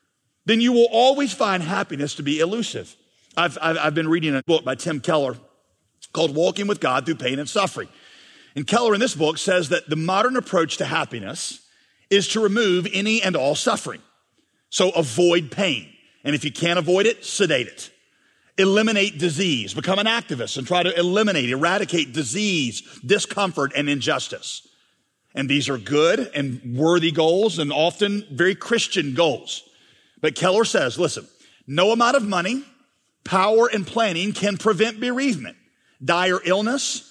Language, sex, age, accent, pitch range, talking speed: English, male, 50-69, American, 155-225 Hz, 160 wpm